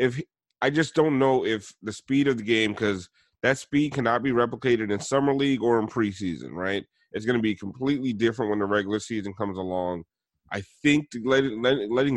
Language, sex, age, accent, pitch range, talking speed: English, male, 30-49, American, 105-135 Hz, 185 wpm